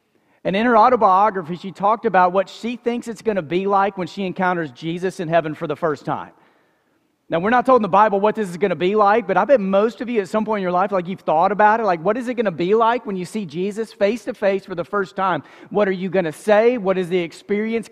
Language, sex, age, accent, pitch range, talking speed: English, male, 40-59, American, 165-205 Hz, 280 wpm